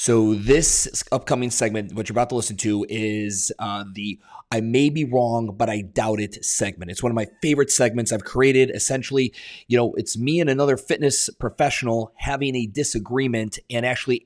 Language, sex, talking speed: English, male, 185 wpm